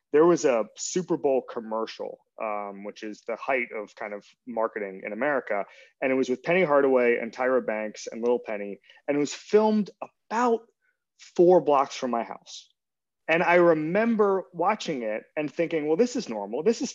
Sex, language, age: male, English, 30-49